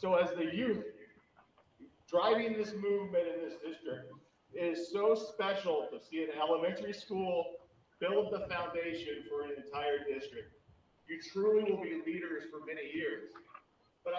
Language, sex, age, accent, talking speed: English, male, 40-59, American, 145 wpm